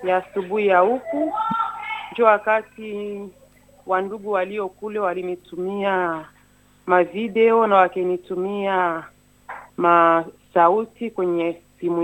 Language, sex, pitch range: Swahili, female, 180-225 Hz